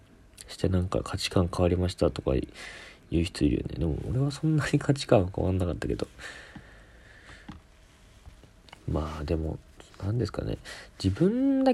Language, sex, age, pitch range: Japanese, male, 40-59, 80-100 Hz